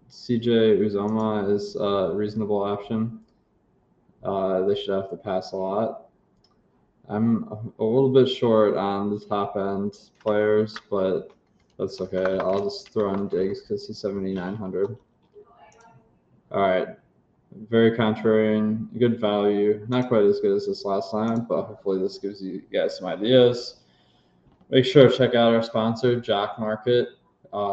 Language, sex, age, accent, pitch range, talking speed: English, male, 20-39, American, 100-115 Hz, 145 wpm